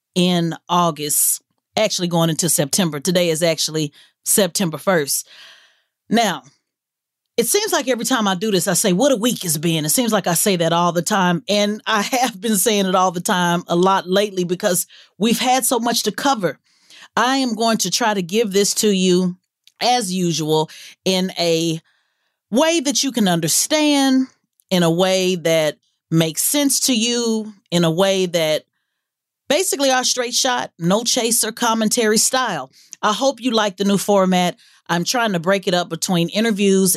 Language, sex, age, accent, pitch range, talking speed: English, female, 30-49, American, 170-225 Hz, 180 wpm